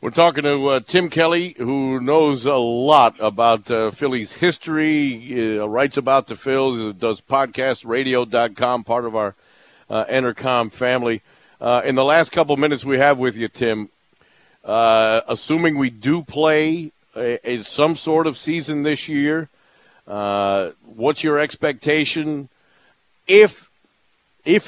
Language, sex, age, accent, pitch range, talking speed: English, male, 50-69, American, 120-150 Hz, 140 wpm